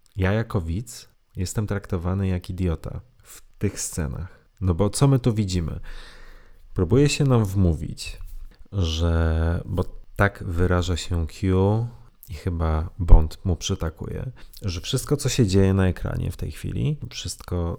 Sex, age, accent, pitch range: male, 30-49, native, 85-110 Hz